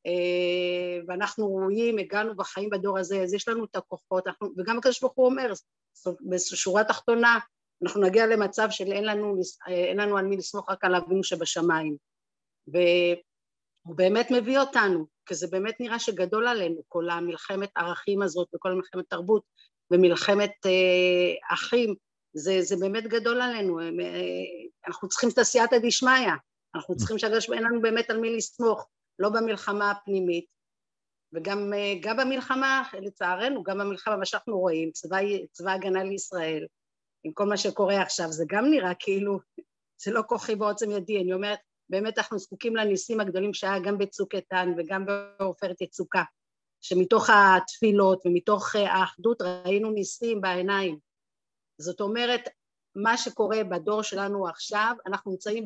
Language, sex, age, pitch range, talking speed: Hebrew, female, 50-69, 180-220 Hz, 140 wpm